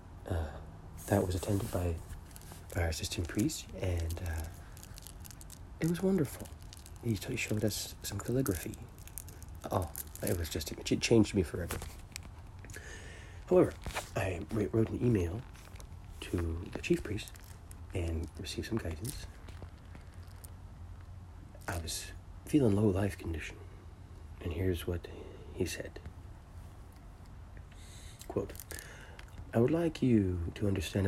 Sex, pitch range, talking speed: male, 85-100 Hz, 110 wpm